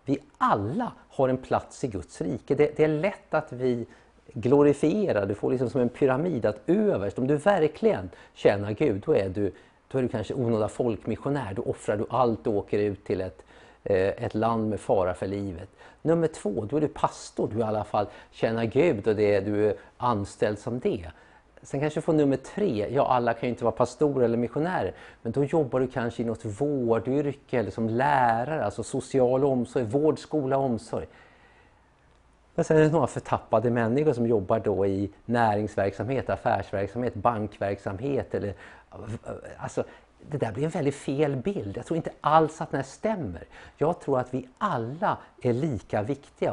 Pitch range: 110-145 Hz